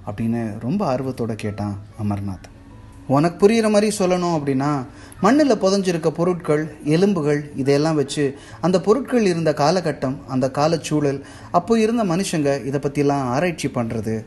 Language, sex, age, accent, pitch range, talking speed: Tamil, male, 30-49, native, 110-160 Hz, 120 wpm